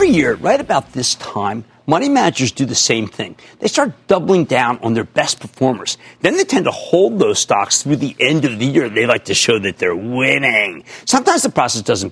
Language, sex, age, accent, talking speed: English, male, 50-69, American, 220 wpm